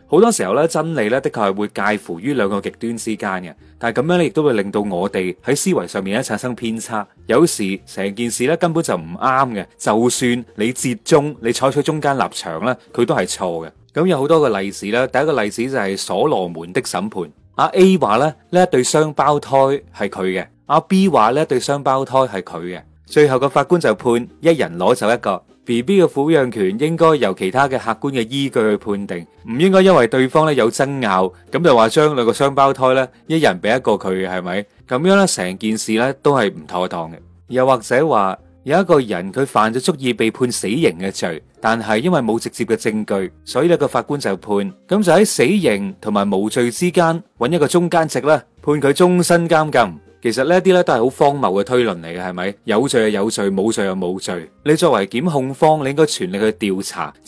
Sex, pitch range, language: male, 100-155 Hz, Chinese